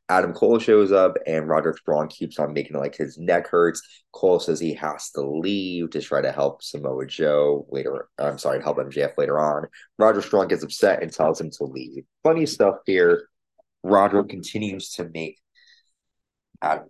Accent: American